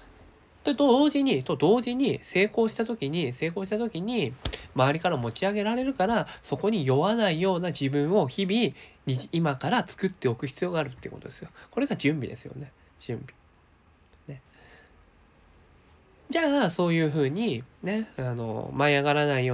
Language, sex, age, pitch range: Japanese, male, 20-39, 130-205 Hz